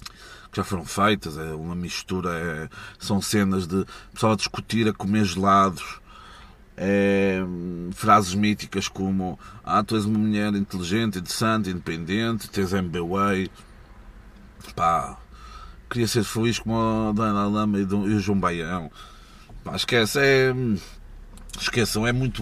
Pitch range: 90-110 Hz